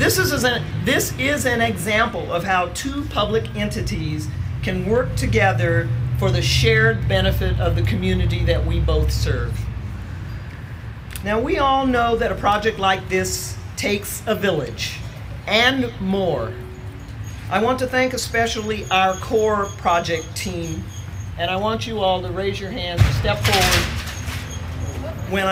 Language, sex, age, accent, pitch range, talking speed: English, male, 40-59, American, 100-140 Hz, 140 wpm